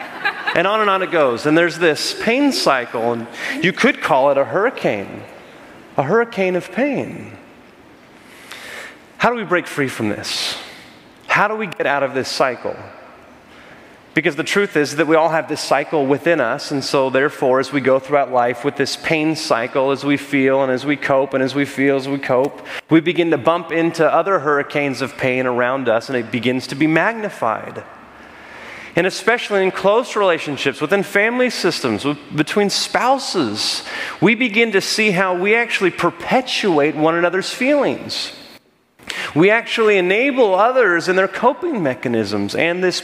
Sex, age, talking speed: male, 30-49, 175 wpm